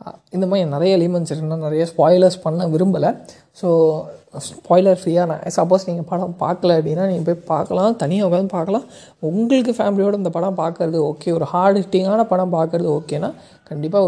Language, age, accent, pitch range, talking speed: Tamil, 20-39, native, 165-200 Hz, 155 wpm